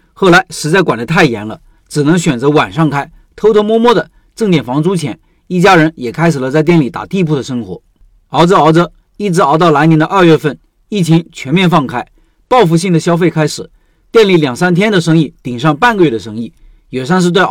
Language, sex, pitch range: Chinese, male, 150-185 Hz